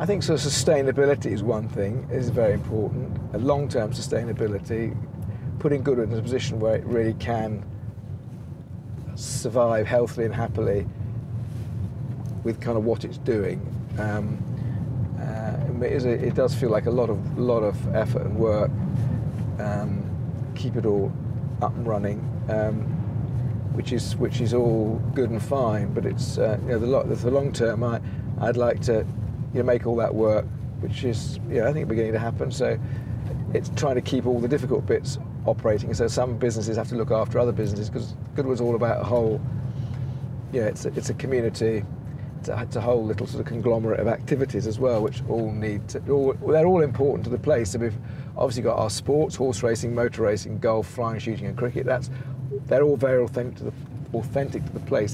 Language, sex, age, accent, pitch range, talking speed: English, male, 50-69, British, 115-130 Hz, 195 wpm